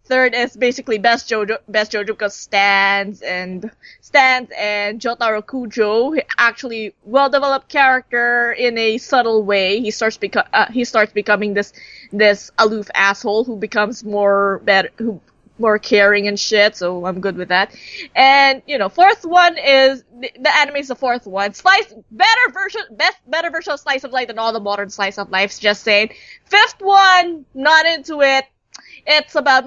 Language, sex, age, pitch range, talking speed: English, female, 20-39, 215-310 Hz, 175 wpm